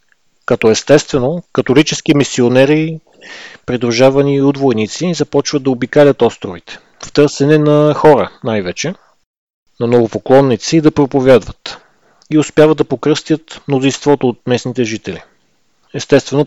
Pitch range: 120-145 Hz